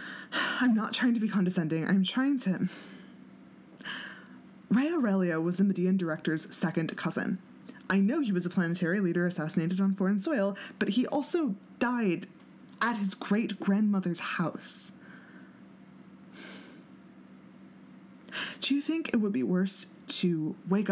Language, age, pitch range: English, 20-39, 170-215 Hz